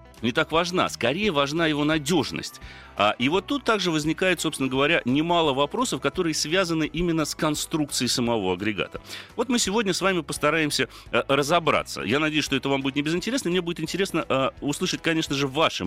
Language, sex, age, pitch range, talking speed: Russian, male, 30-49, 120-175 Hz, 170 wpm